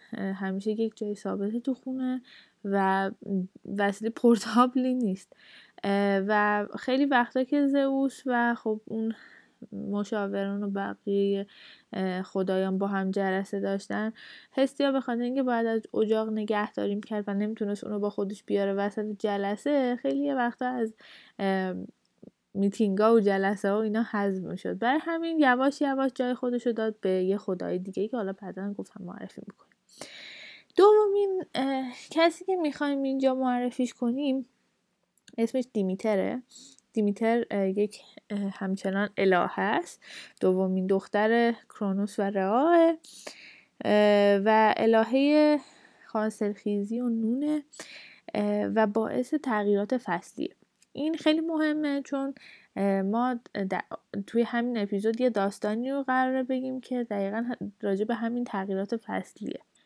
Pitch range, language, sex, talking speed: 200-255 Hz, Persian, female, 125 wpm